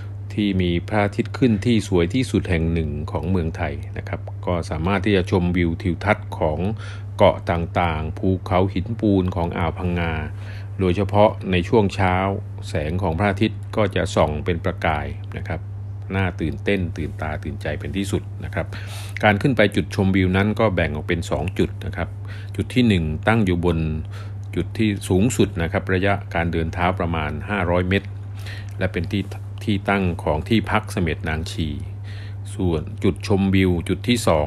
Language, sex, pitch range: English, male, 90-100 Hz